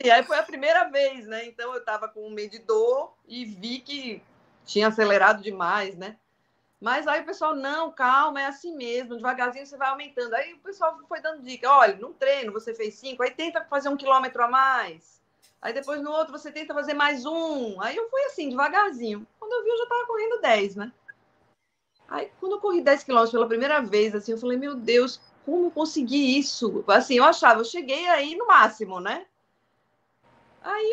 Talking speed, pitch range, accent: 200 wpm, 205-305 Hz, Brazilian